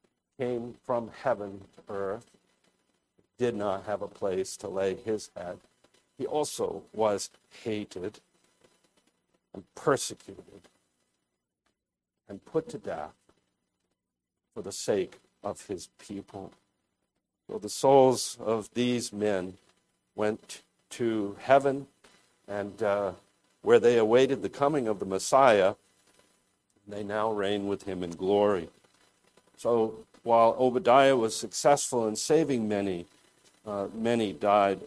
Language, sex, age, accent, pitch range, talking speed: English, male, 50-69, American, 100-125 Hz, 115 wpm